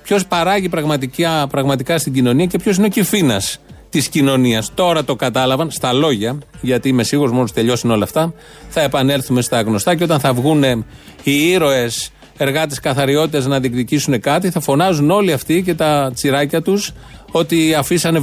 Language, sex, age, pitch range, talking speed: Greek, male, 30-49, 125-165 Hz, 165 wpm